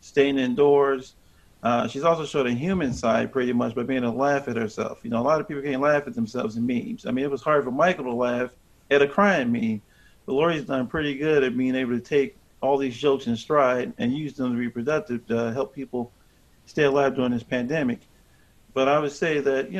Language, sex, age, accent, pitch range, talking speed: English, male, 40-59, American, 125-145 Hz, 235 wpm